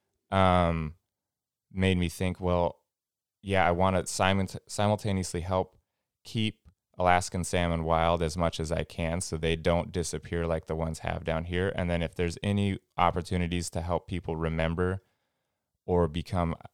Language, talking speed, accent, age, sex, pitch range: English, 150 wpm, American, 20-39, male, 80-95 Hz